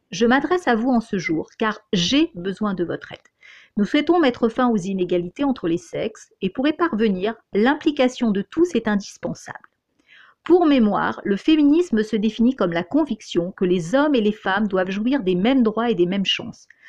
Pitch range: 195-260 Hz